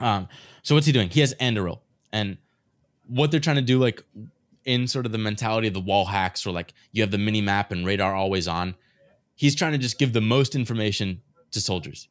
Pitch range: 95-120 Hz